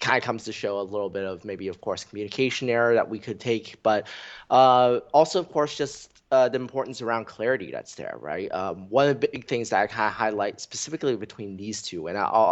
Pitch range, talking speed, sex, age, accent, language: 100-125 Hz, 235 wpm, male, 20-39, American, English